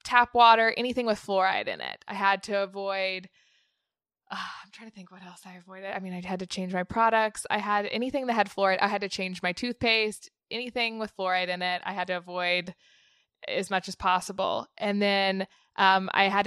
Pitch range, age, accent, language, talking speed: 190-210 Hz, 20-39, American, English, 210 wpm